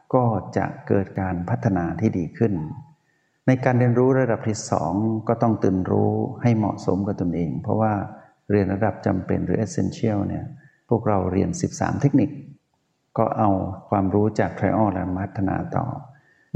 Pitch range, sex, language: 100-130 Hz, male, Thai